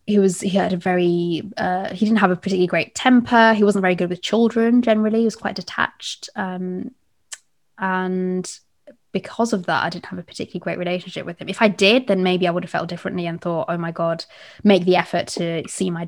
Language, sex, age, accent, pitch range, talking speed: English, female, 20-39, British, 170-190 Hz, 225 wpm